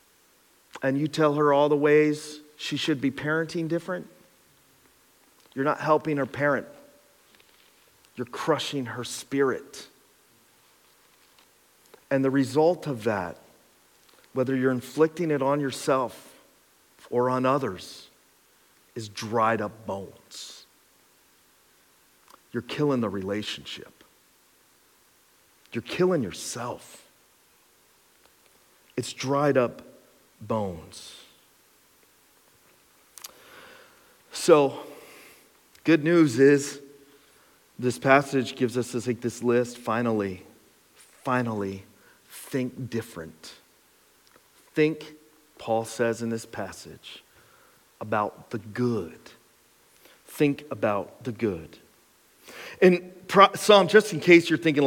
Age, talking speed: 40-59, 95 wpm